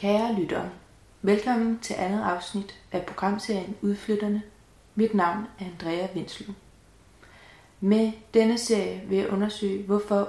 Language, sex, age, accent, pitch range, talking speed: Danish, female, 30-49, native, 180-210 Hz, 120 wpm